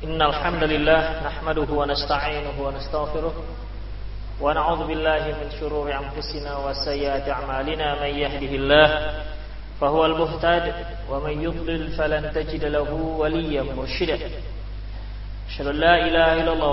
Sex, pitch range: male, 115-150 Hz